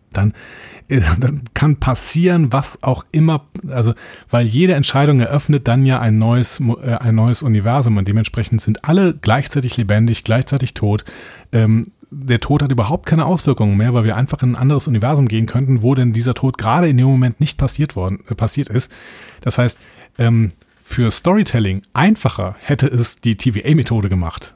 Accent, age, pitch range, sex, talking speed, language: German, 30-49, 110-140 Hz, male, 170 wpm, German